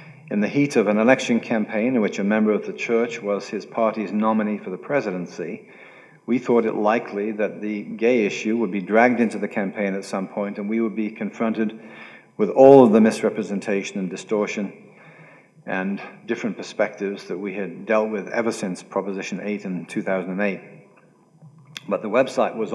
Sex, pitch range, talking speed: male, 105-120 Hz, 180 wpm